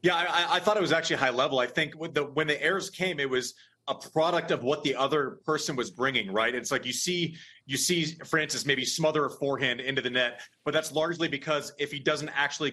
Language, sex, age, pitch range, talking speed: English, male, 30-49, 135-160 Hz, 240 wpm